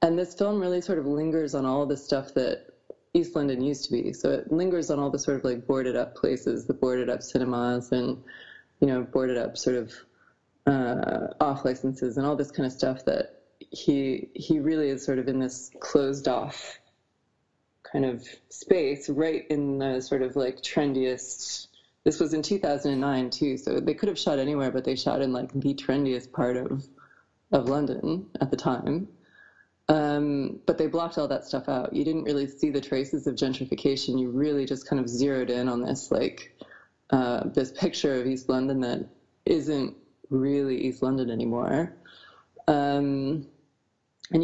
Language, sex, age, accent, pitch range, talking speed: English, female, 20-39, American, 130-155 Hz, 180 wpm